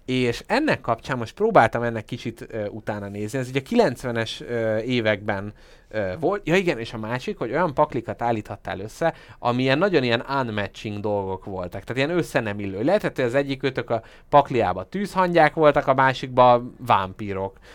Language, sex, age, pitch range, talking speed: Hungarian, male, 30-49, 110-140 Hz, 160 wpm